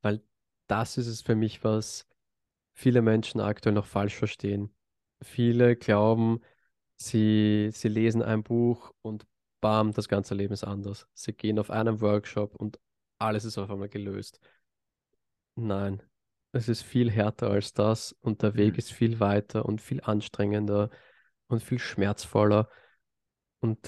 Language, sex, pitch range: German, male, 105-115 Hz